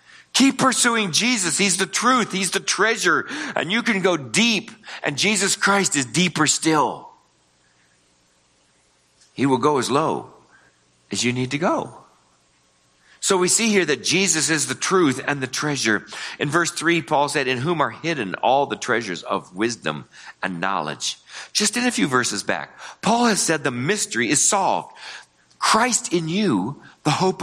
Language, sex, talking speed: English, male, 165 wpm